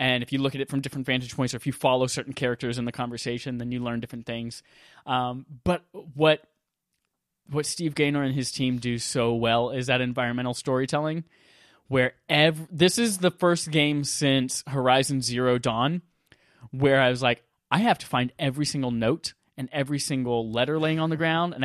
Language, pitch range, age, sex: English, 125-160 Hz, 20-39, male